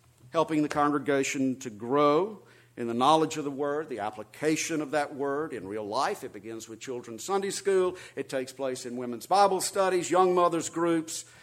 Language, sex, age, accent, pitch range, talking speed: English, male, 50-69, American, 120-165 Hz, 185 wpm